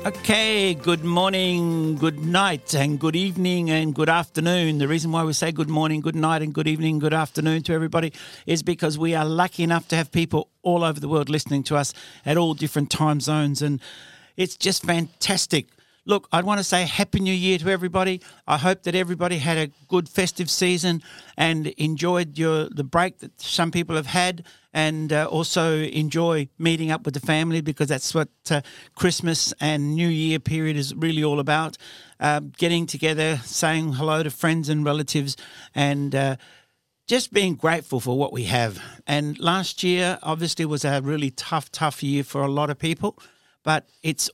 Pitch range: 150-175 Hz